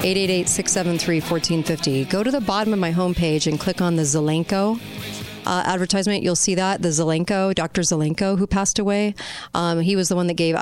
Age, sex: 40-59, female